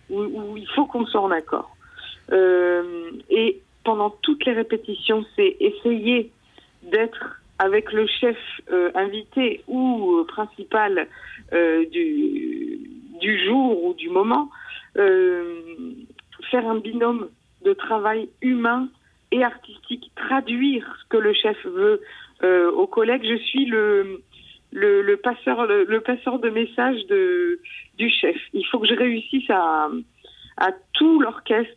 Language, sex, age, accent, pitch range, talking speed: French, female, 50-69, French, 215-350 Hz, 130 wpm